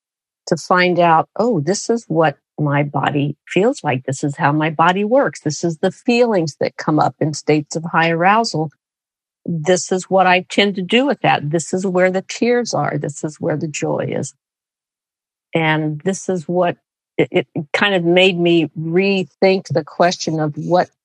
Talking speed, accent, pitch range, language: 185 wpm, American, 150-185 Hz, English